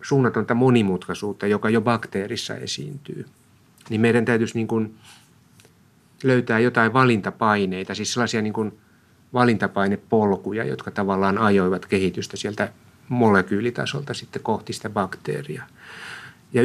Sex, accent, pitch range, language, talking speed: male, native, 105-125 Hz, Finnish, 110 wpm